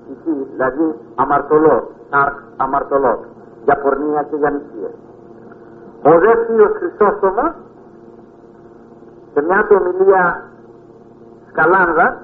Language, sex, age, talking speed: Greek, male, 50-69, 80 wpm